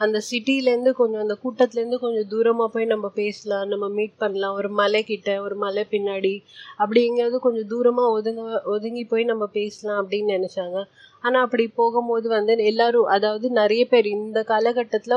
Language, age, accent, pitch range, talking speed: Tamil, 30-49, native, 205-230 Hz, 150 wpm